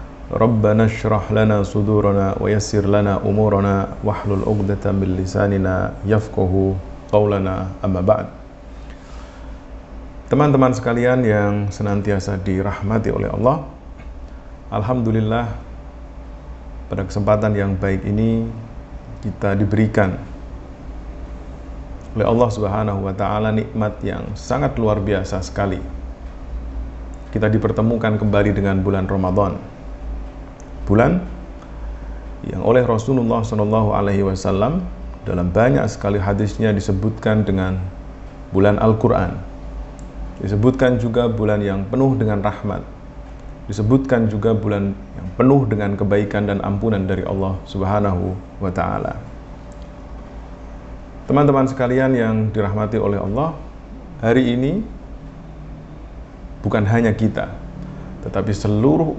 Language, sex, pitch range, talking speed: Indonesian, male, 95-110 Hz, 85 wpm